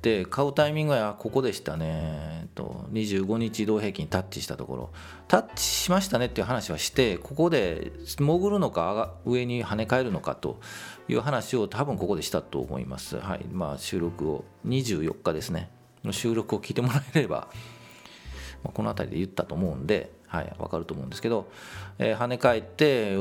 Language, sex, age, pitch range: Japanese, male, 40-59, 85-130 Hz